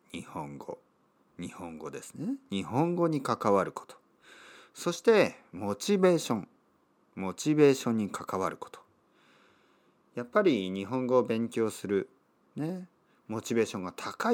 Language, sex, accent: Japanese, male, native